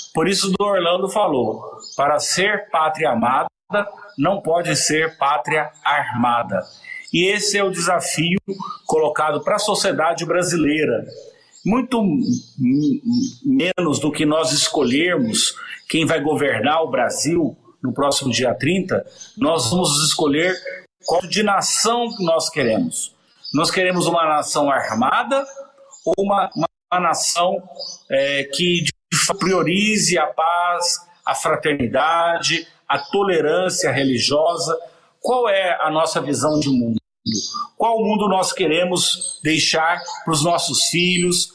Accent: Brazilian